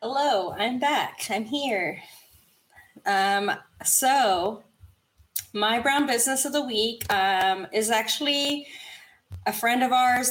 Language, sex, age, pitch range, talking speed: English, female, 20-39, 195-240 Hz, 115 wpm